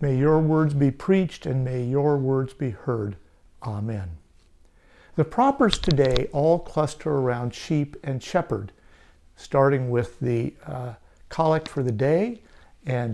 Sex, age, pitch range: male, 60-79, 120-160 Hz